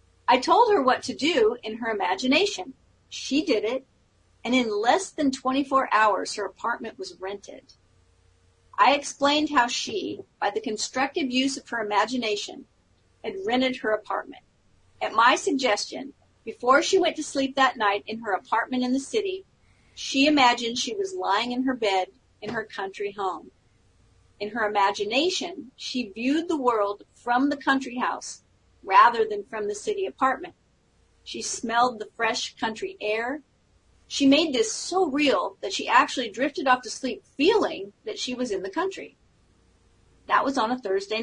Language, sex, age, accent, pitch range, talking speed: English, female, 40-59, American, 210-290 Hz, 165 wpm